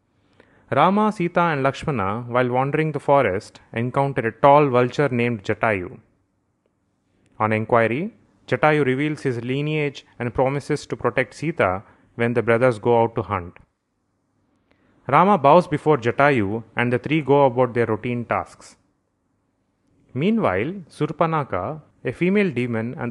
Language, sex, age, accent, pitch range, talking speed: English, male, 30-49, Indian, 115-150 Hz, 130 wpm